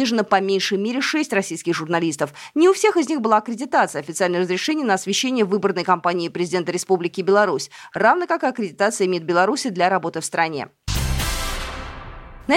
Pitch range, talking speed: 185-275 Hz, 160 wpm